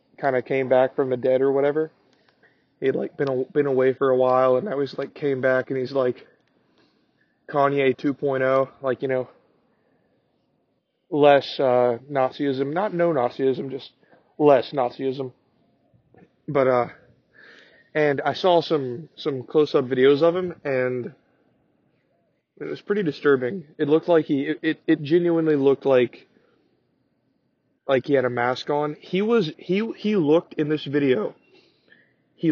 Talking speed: 150 wpm